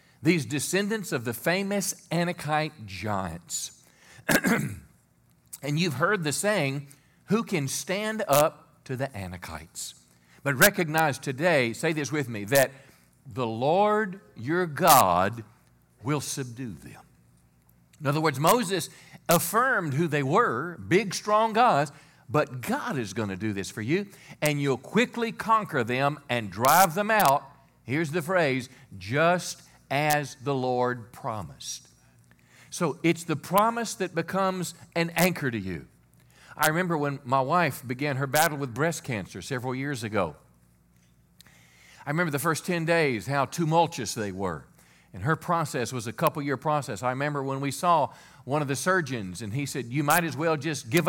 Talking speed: 155 wpm